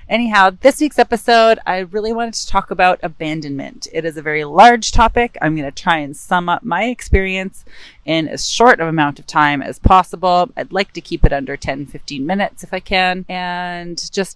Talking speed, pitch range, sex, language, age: 205 wpm, 160-195 Hz, female, English, 30-49